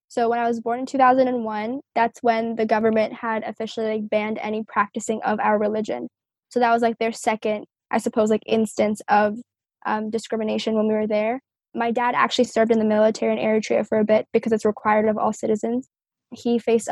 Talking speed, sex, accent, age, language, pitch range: 200 wpm, female, American, 10-29, English, 215-235 Hz